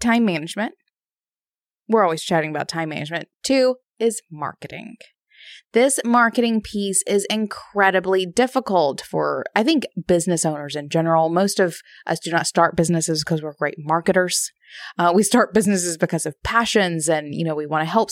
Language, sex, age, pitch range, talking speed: English, female, 20-39, 165-230 Hz, 160 wpm